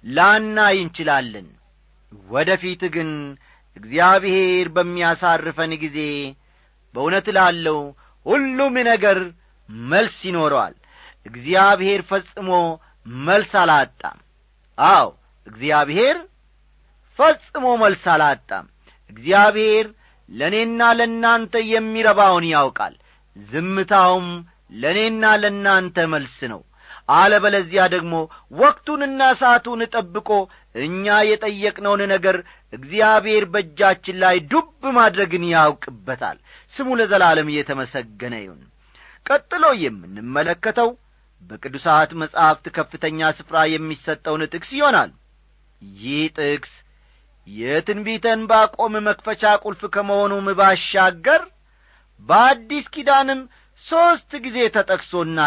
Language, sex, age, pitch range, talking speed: Amharic, male, 40-59, 155-215 Hz, 80 wpm